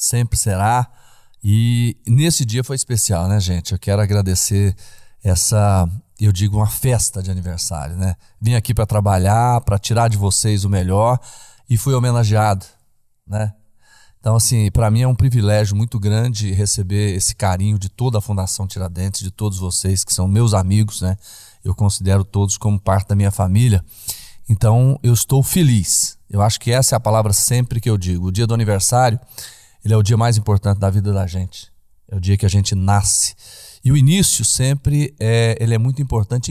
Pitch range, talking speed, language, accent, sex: 95-115 Hz, 180 wpm, Portuguese, Brazilian, male